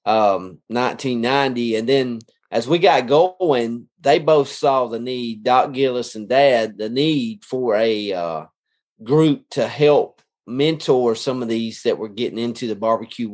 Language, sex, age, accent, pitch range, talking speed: English, male, 30-49, American, 110-130 Hz, 155 wpm